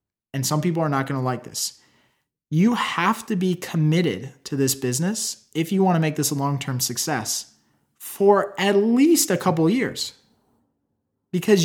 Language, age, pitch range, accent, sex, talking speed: English, 20-39, 130-175 Hz, American, male, 160 wpm